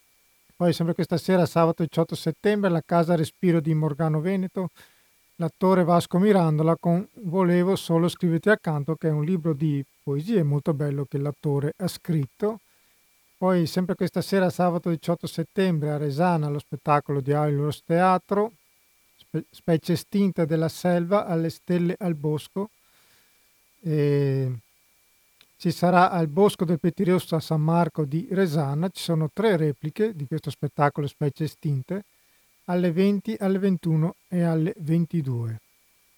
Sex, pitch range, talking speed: male, 155-180 Hz, 140 wpm